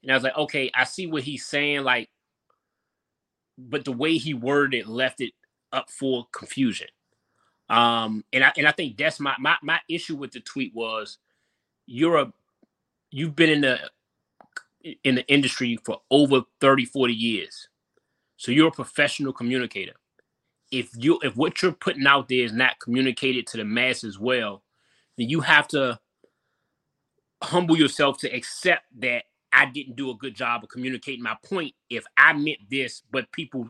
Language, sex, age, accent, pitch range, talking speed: English, male, 20-39, American, 120-145 Hz, 175 wpm